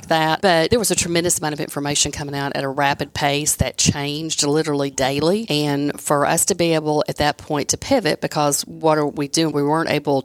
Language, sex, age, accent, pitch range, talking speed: English, female, 40-59, American, 140-155 Hz, 225 wpm